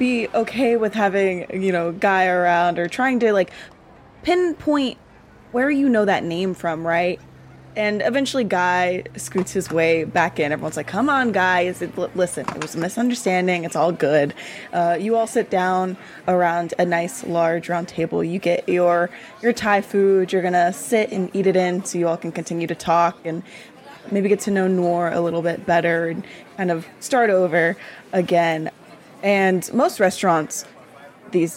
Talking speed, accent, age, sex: 175 wpm, American, 20-39, female